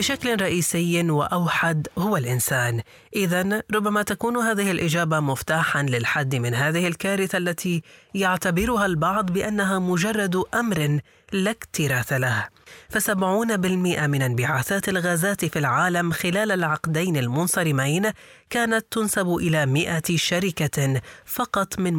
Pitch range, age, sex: 145-195 Hz, 30-49, female